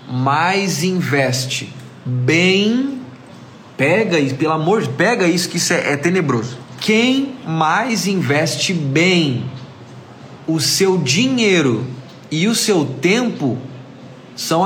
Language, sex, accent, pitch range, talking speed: Portuguese, male, Brazilian, 135-200 Hz, 115 wpm